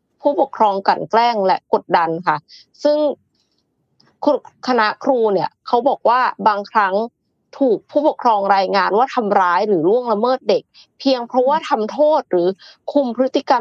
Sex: female